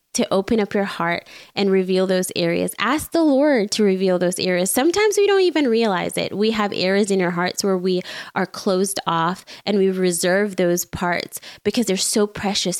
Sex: female